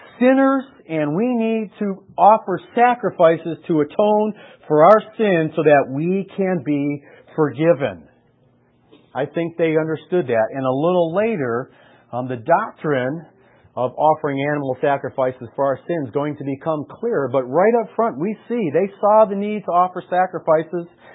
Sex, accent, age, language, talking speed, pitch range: male, American, 40-59, English, 155 wpm, 135-180 Hz